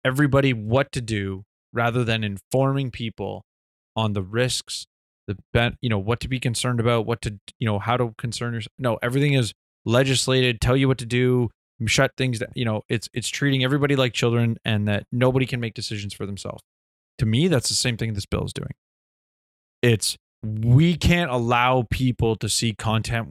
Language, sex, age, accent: English, male, 20-39, American